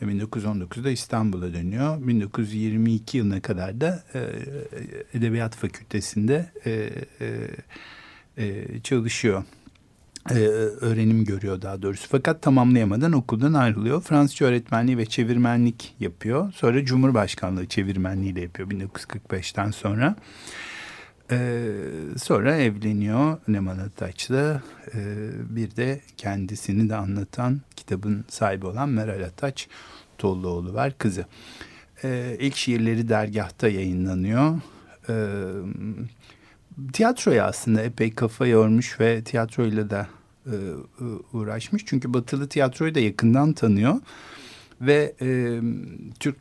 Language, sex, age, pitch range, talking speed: Turkish, male, 60-79, 105-135 Hz, 95 wpm